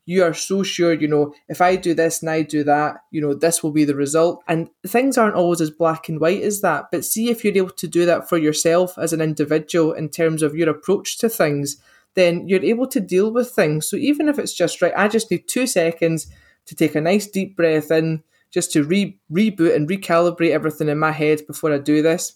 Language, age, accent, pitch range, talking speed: English, 20-39, British, 155-195 Hz, 240 wpm